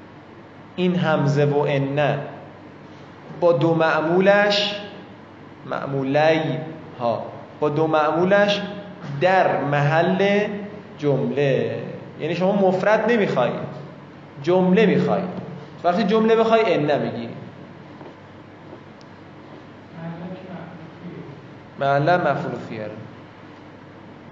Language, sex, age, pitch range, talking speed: Persian, male, 20-39, 145-190 Hz, 70 wpm